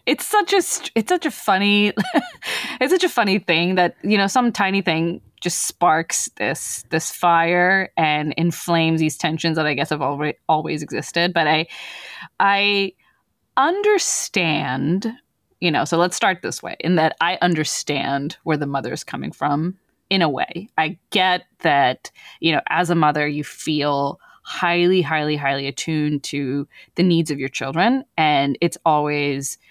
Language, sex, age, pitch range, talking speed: English, female, 20-39, 150-185 Hz, 165 wpm